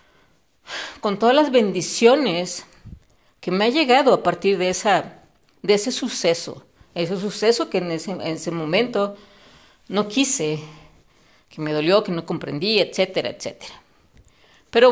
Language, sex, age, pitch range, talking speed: Spanish, female, 40-59, 180-265 Hz, 135 wpm